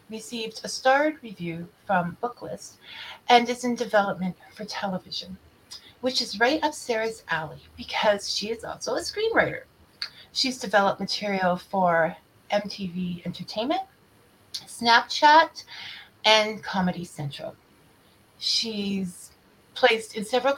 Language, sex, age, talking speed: English, female, 30-49, 110 wpm